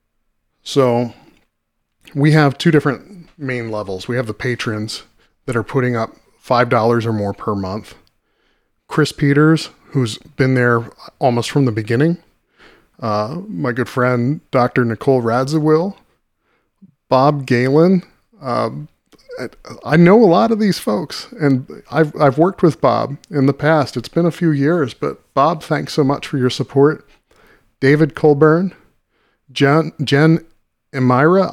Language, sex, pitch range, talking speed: English, male, 115-150 Hz, 140 wpm